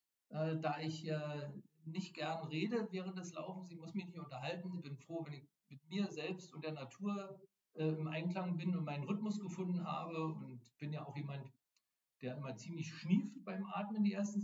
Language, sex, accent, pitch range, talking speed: German, male, German, 145-180 Hz, 195 wpm